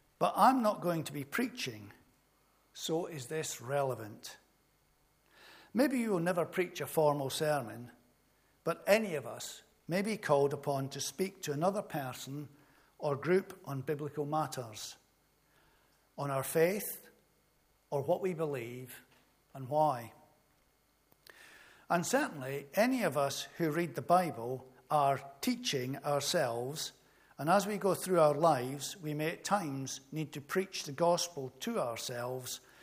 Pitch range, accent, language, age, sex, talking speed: 135-170 Hz, British, English, 60-79, male, 140 wpm